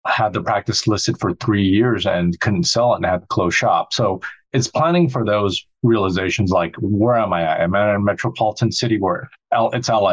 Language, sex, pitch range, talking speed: English, male, 95-125 Hz, 215 wpm